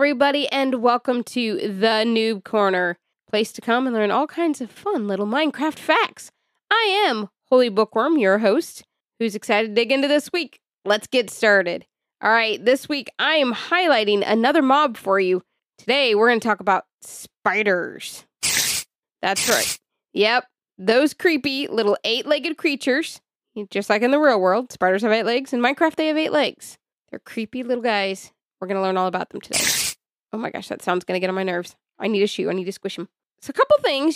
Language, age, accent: English, 20-39, American